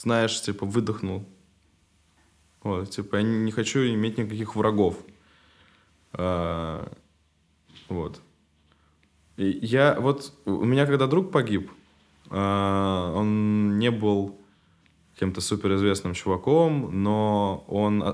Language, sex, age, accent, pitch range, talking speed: Russian, male, 20-39, native, 95-120 Hz, 100 wpm